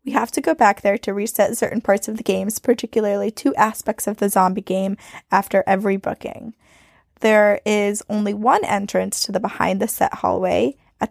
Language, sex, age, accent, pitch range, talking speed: English, female, 10-29, American, 195-230 Hz, 185 wpm